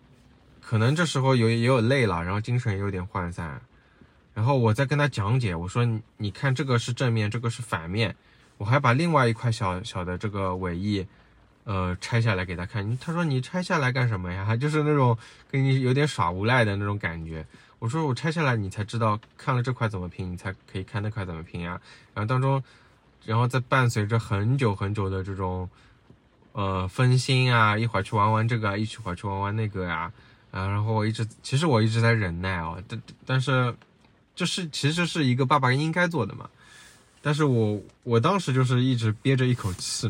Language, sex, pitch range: Chinese, male, 100-130 Hz